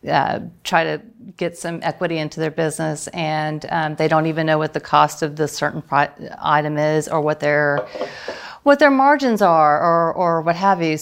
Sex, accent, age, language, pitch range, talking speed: female, American, 40-59, English, 160-195 Hz, 190 wpm